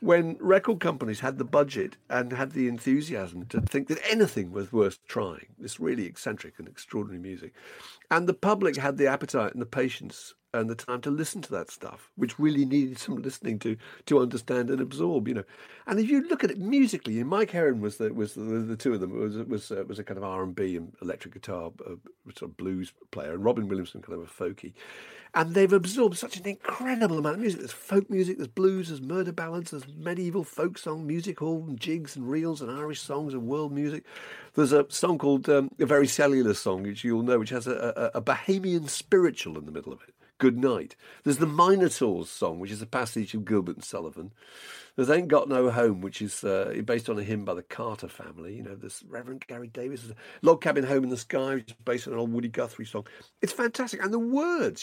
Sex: male